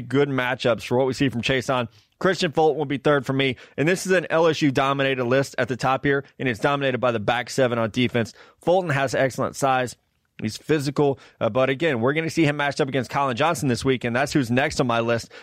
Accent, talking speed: American, 250 wpm